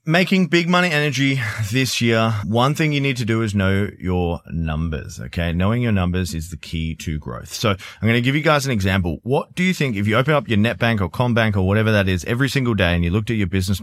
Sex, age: male, 30-49